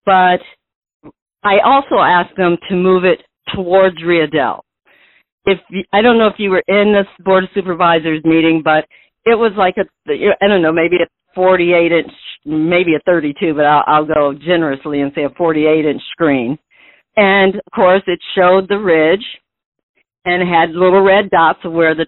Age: 50-69